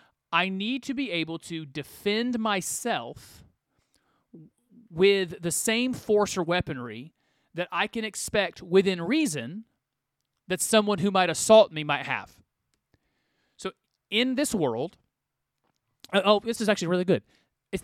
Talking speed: 130 wpm